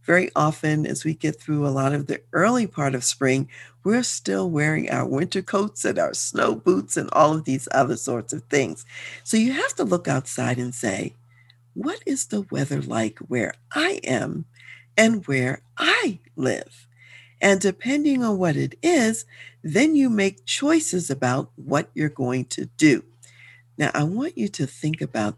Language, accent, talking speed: English, American, 175 wpm